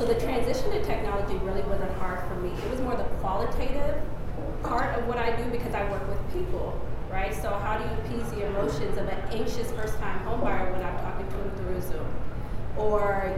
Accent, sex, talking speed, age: American, female, 205 wpm, 30-49